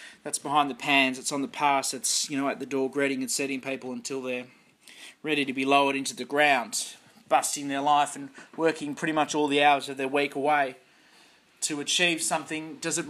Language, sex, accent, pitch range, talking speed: English, male, Australian, 135-165 Hz, 210 wpm